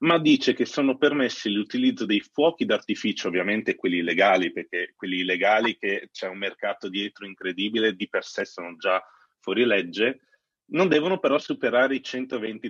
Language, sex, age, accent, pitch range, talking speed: Italian, male, 30-49, native, 100-125 Hz, 160 wpm